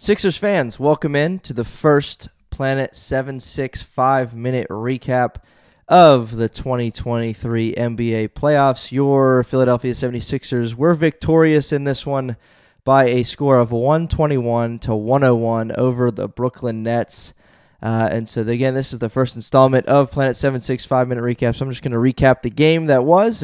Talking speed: 145 wpm